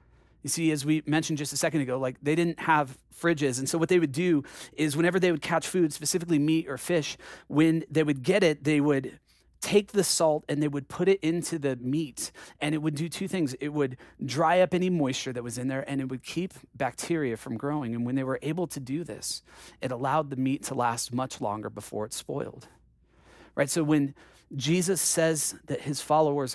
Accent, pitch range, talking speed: American, 135-160 Hz, 220 wpm